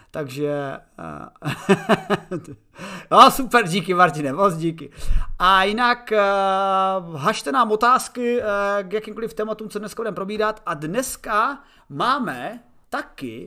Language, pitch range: Czech, 165-220 Hz